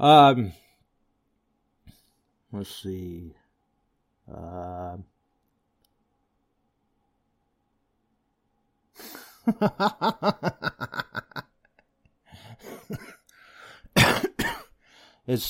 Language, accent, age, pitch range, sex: English, American, 60-79, 100-145 Hz, male